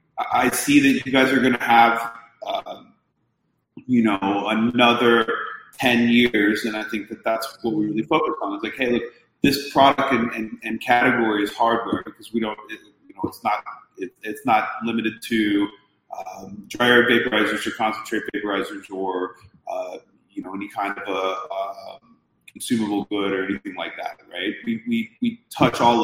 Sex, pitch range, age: male, 105-125 Hz, 30-49